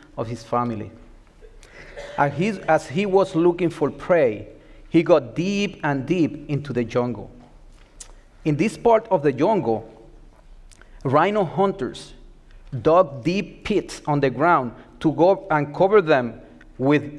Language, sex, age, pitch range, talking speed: English, male, 40-59, 125-190 Hz, 135 wpm